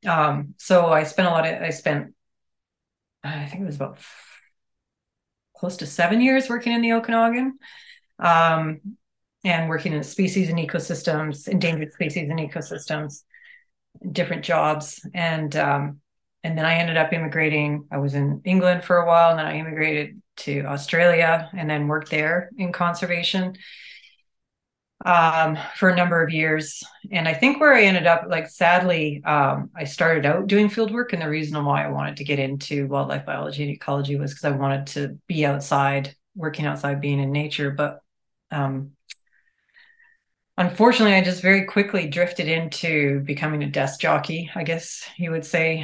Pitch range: 145-180 Hz